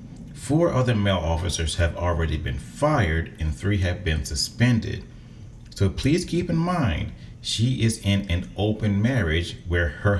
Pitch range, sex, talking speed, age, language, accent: 80-115 Hz, male, 155 wpm, 40-59, English, American